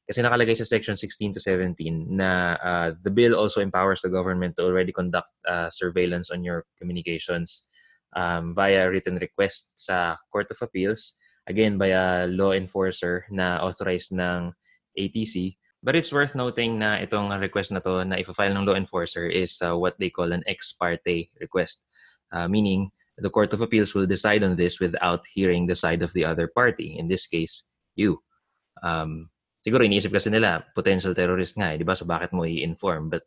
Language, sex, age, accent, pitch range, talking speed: English, male, 20-39, Filipino, 90-100 Hz, 180 wpm